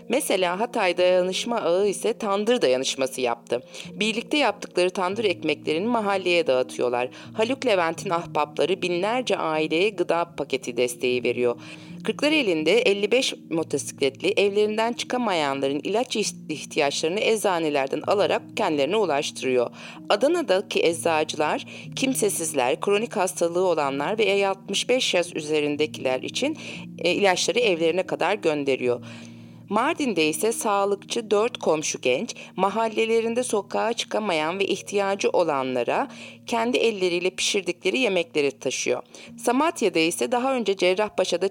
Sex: female